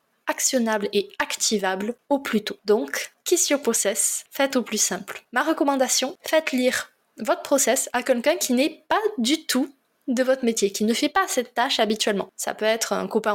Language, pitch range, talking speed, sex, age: French, 215-290 Hz, 185 wpm, female, 20-39